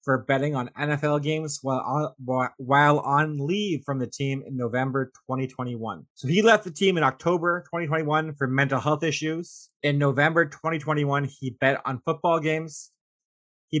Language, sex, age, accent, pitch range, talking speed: English, male, 20-39, American, 130-155 Hz, 160 wpm